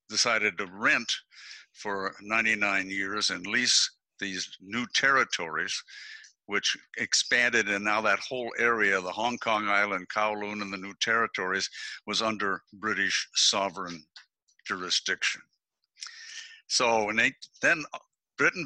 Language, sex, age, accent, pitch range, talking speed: English, male, 60-79, American, 105-125 Hz, 115 wpm